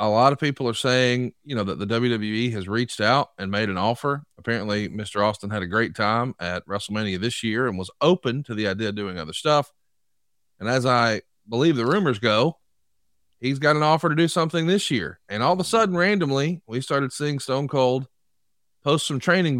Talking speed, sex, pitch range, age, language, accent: 210 wpm, male, 105-150 Hz, 30-49, English, American